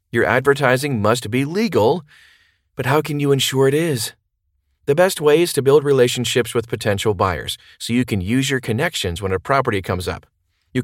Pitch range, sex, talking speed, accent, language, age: 105-135 Hz, male, 190 wpm, American, English, 40-59